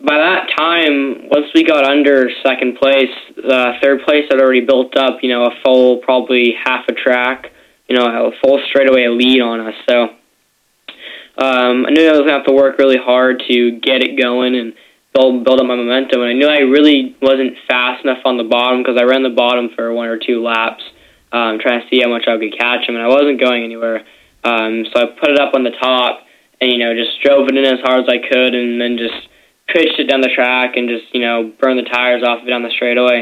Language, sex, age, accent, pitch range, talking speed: English, male, 10-29, American, 120-135 Hz, 240 wpm